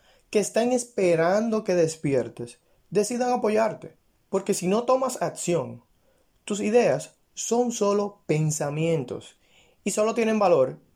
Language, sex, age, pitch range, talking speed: Spanish, male, 30-49, 130-185 Hz, 115 wpm